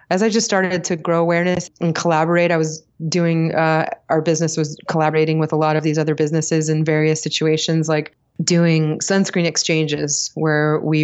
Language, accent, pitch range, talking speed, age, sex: English, American, 150-160 Hz, 180 wpm, 20-39, female